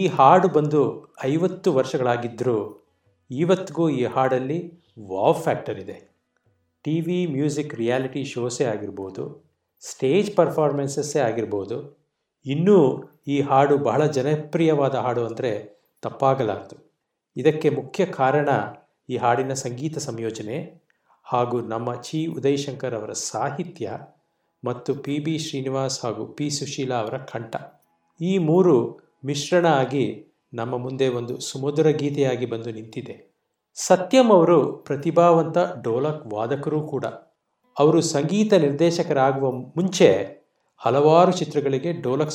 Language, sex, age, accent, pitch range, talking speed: Kannada, male, 50-69, native, 125-160 Hz, 105 wpm